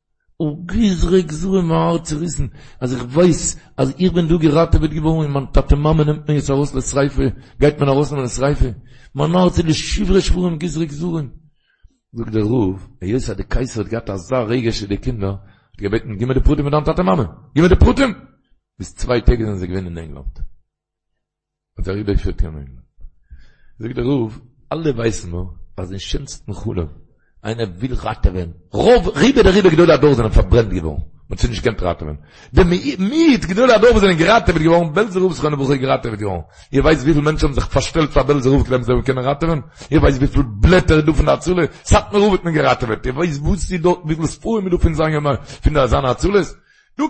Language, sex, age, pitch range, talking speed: Hebrew, male, 60-79, 110-170 Hz, 185 wpm